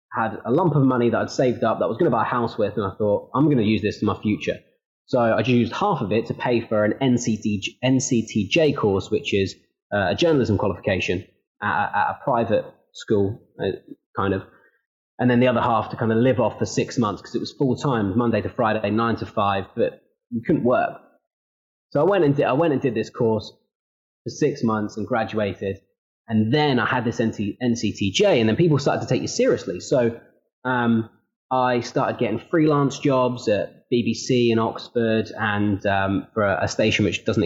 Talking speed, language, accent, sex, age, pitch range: 205 wpm, English, British, male, 20-39, 105-125 Hz